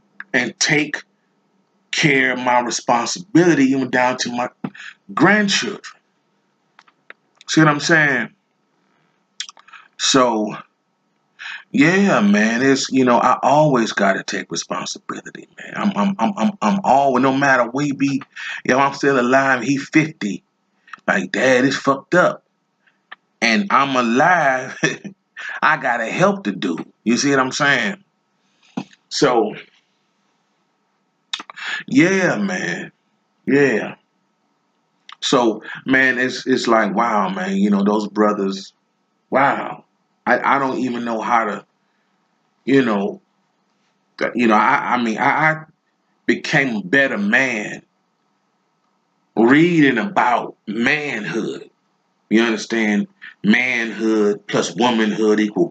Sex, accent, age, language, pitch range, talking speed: male, American, 30-49, English, 115-185 Hz, 115 wpm